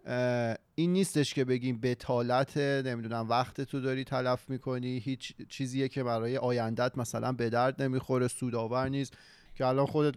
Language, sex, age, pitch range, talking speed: Persian, male, 30-49, 120-135 Hz, 155 wpm